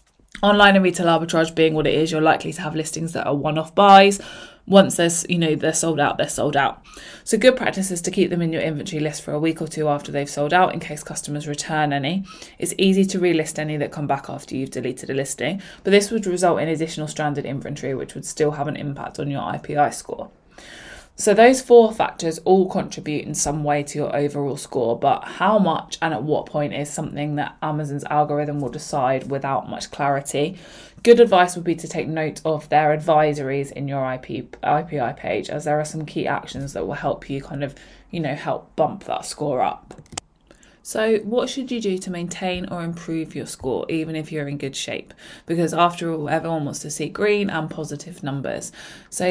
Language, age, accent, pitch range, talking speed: English, 20-39, British, 145-180 Hz, 210 wpm